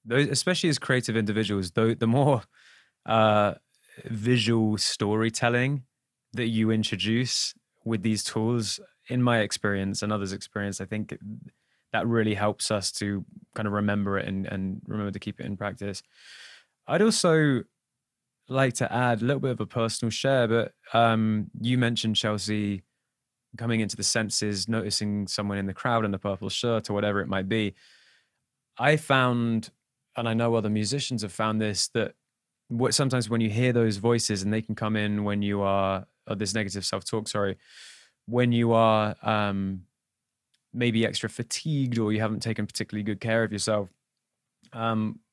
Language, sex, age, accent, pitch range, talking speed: English, male, 20-39, British, 105-120 Hz, 165 wpm